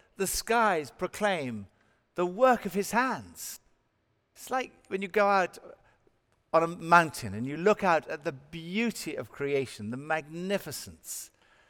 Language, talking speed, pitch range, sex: English, 145 wpm, 130-215 Hz, male